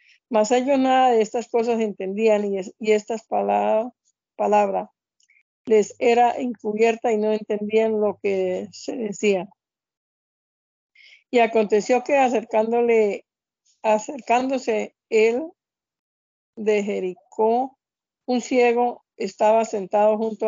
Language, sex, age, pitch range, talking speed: Spanish, female, 50-69, 205-235 Hz, 105 wpm